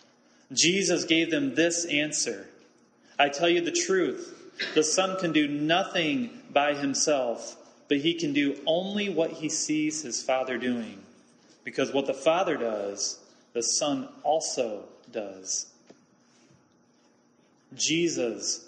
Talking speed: 120 wpm